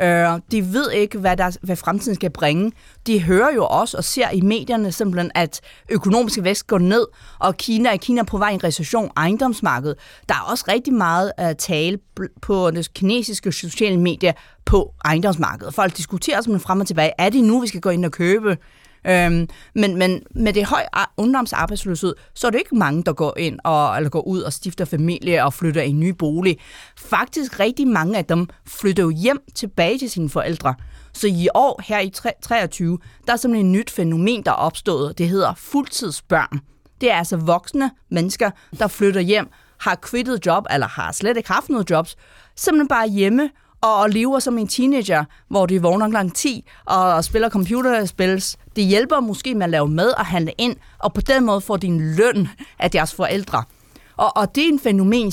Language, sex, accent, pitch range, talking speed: Danish, female, native, 175-225 Hz, 200 wpm